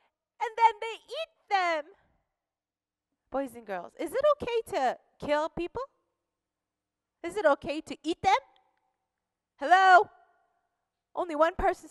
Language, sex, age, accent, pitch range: Korean, female, 30-49, American, 265-360 Hz